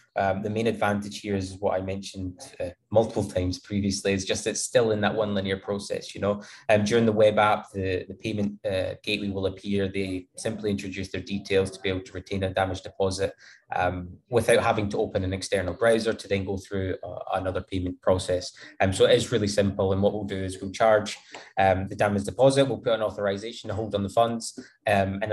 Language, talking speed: English, 220 wpm